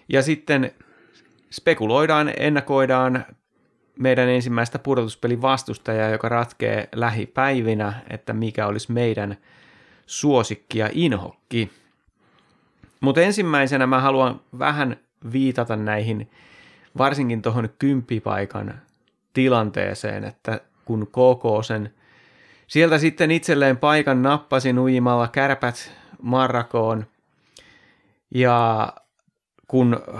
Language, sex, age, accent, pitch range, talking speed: Finnish, male, 30-49, native, 110-130 Hz, 85 wpm